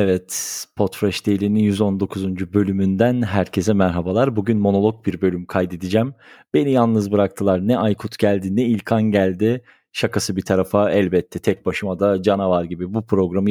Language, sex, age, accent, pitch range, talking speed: Turkish, male, 40-59, native, 105-130 Hz, 140 wpm